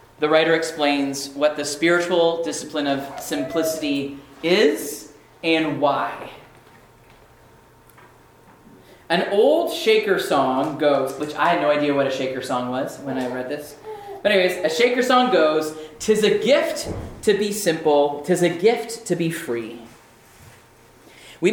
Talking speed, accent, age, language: 140 wpm, American, 30-49, English